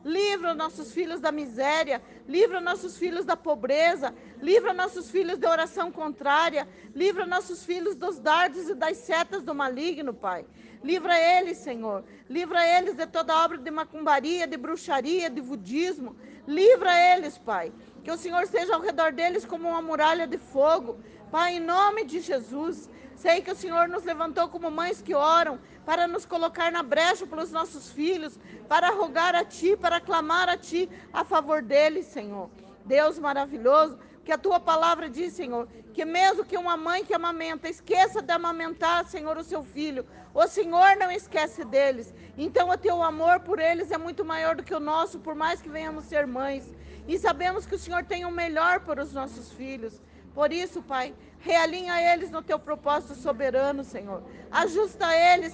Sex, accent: female, Brazilian